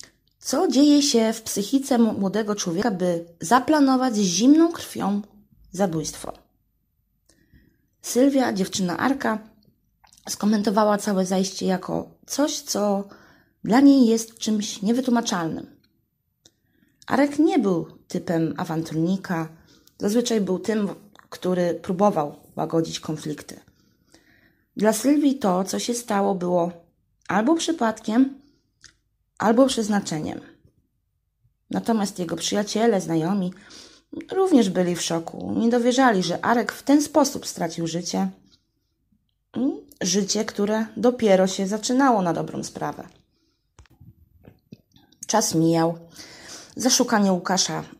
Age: 20-39